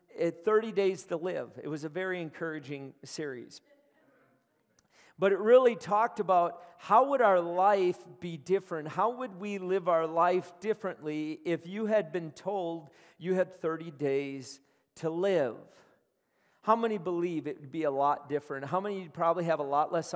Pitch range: 155-190 Hz